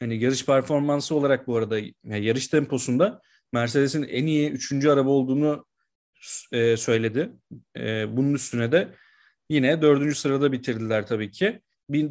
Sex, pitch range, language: male, 125-155 Hz, Turkish